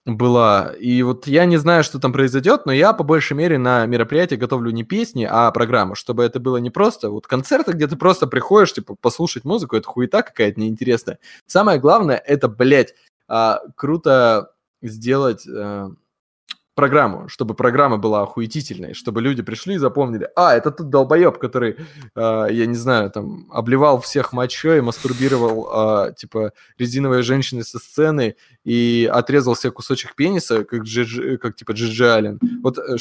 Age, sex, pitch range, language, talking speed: 20-39, male, 115-150 Hz, Russian, 155 wpm